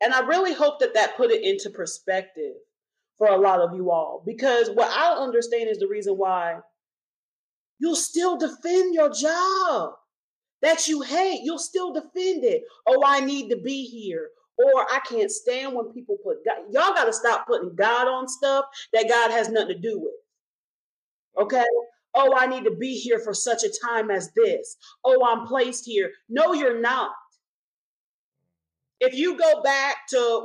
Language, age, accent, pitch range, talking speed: English, 30-49, American, 230-360 Hz, 175 wpm